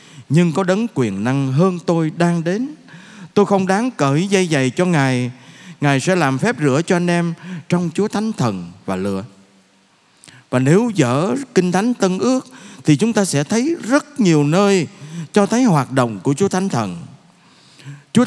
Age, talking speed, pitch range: 20-39, 180 wpm, 135-195 Hz